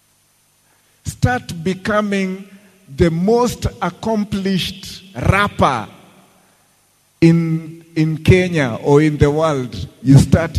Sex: male